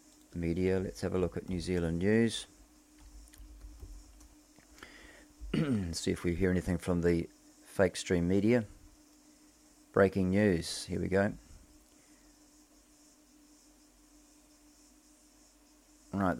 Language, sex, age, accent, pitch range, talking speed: English, male, 40-59, Australian, 90-120 Hz, 95 wpm